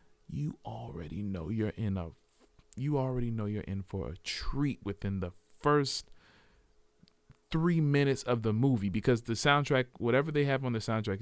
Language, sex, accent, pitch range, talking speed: English, male, American, 95-130 Hz, 165 wpm